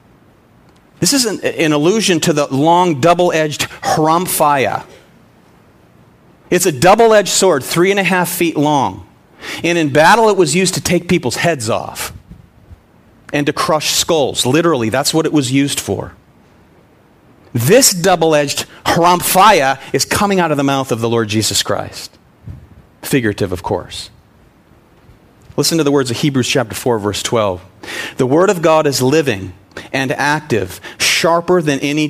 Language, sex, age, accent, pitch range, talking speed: English, male, 40-59, American, 125-170 Hz, 150 wpm